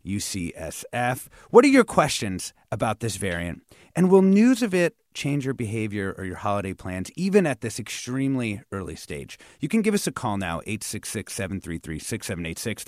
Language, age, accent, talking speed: English, 30-49, American, 160 wpm